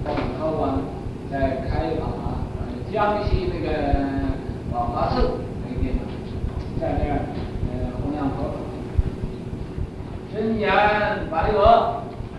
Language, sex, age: Chinese, male, 60-79